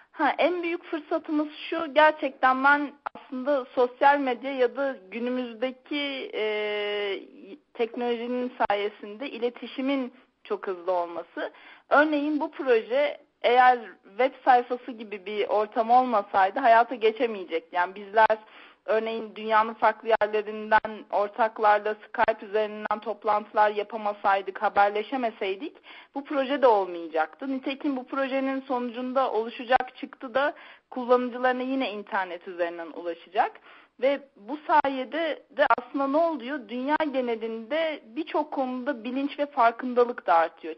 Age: 40-59